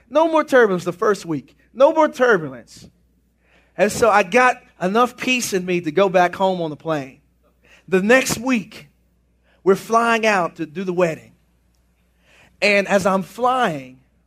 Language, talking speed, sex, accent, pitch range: English, 160 wpm, male, American, 170-255 Hz